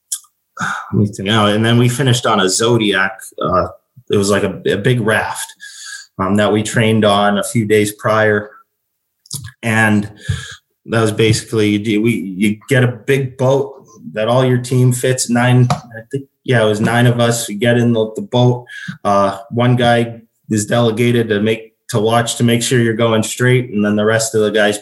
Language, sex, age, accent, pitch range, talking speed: English, male, 20-39, American, 105-125 Hz, 190 wpm